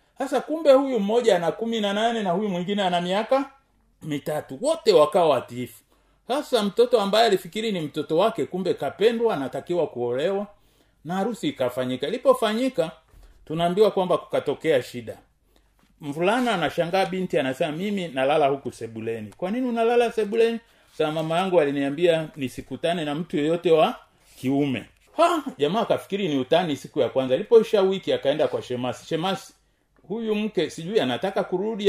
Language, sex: Swahili, male